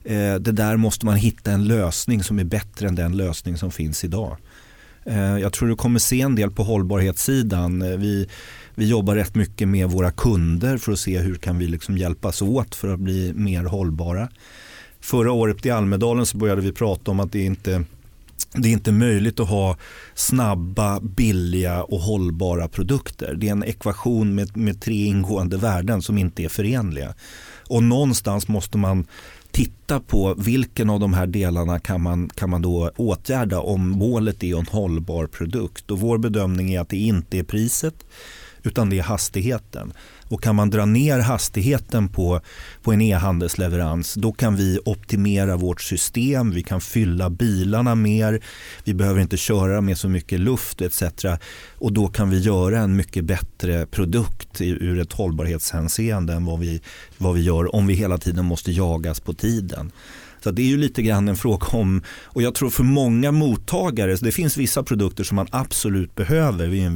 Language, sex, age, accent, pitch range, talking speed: Swedish, male, 30-49, native, 90-110 Hz, 180 wpm